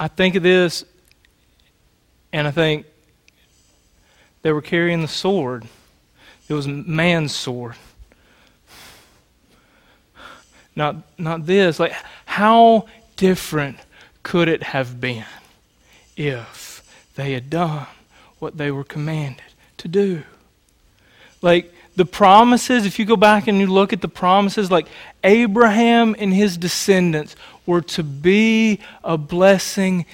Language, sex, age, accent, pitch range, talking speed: English, male, 30-49, American, 150-195 Hz, 115 wpm